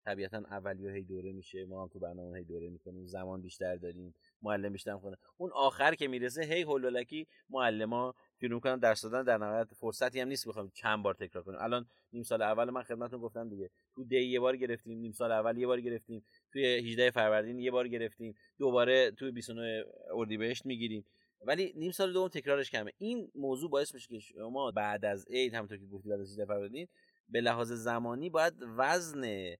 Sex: male